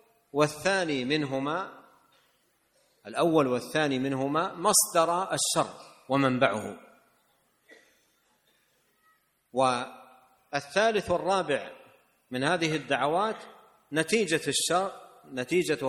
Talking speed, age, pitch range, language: 60 wpm, 50-69, 140-185 Hz, Indonesian